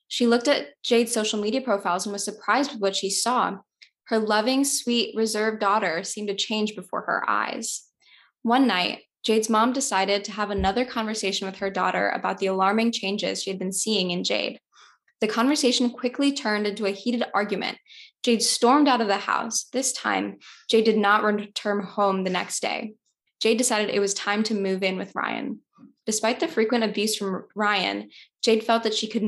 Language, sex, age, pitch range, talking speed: English, female, 10-29, 200-235 Hz, 190 wpm